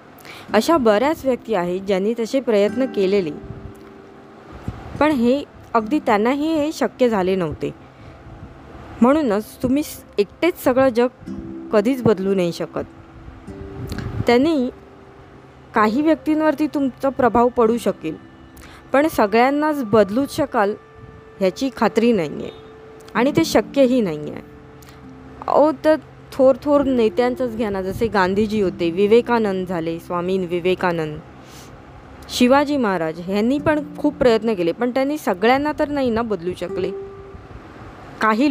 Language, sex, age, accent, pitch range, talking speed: Marathi, female, 20-39, native, 180-265 Hz, 110 wpm